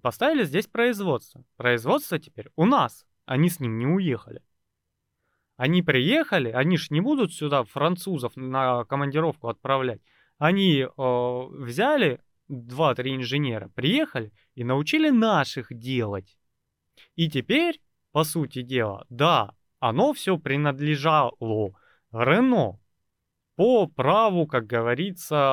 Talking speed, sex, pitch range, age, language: 115 wpm, male, 120-160 Hz, 30-49, Russian